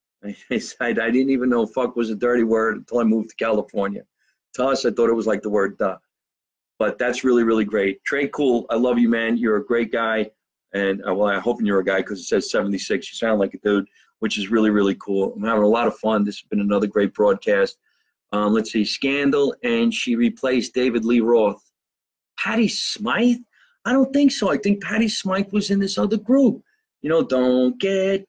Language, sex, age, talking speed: English, male, 40-59, 220 wpm